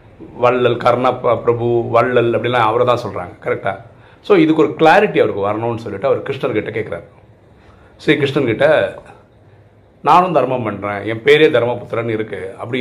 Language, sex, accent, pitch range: Tamil, male, native, 105-130 Hz